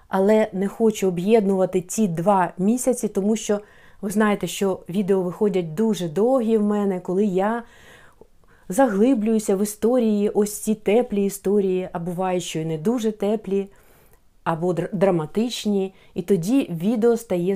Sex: female